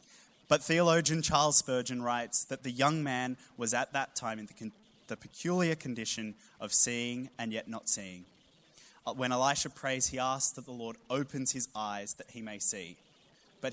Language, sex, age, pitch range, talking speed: English, male, 20-39, 110-135 Hz, 180 wpm